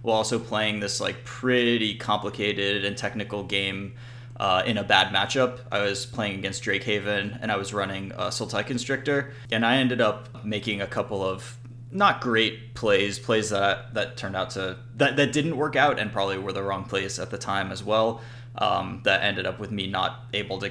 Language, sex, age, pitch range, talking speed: English, male, 20-39, 100-125 Hz, 205 wpm